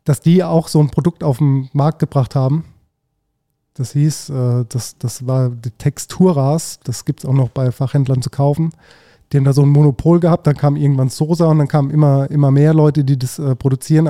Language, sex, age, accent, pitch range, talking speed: German, male, 20-39, German, 135-155 Hz, 215 wpm